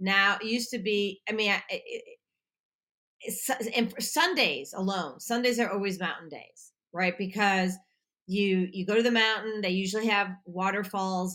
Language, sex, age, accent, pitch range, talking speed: English, female, 40-59, American, 185-230 Hz, 170 wpm